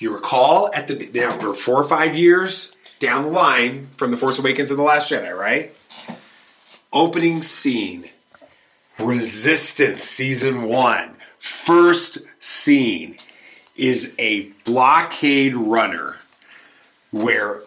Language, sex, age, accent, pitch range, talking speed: English, male, 30-49, American, 115-150 Hz, 115 wpm